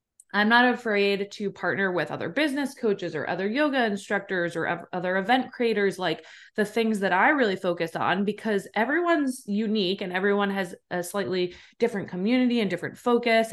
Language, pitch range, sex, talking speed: English, 175-215 Hz, female, 170 wpm